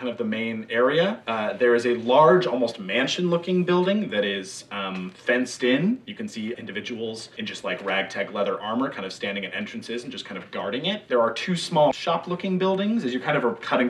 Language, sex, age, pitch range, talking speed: English, male, 30-49, 115-170 Hz, 230 wpm